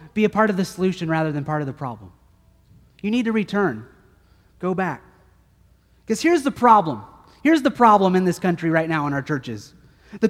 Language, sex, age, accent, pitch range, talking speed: English, male, 30-49, American, 215-275 Hz, 200 wpm